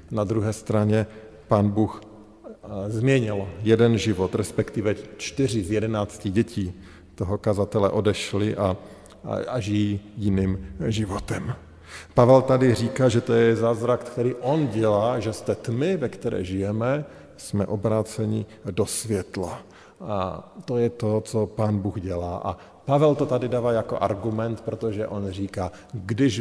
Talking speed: 140 wpm